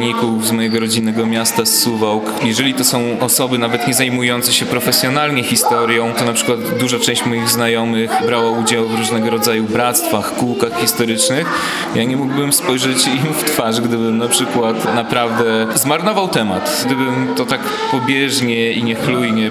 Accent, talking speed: native, 155 wpm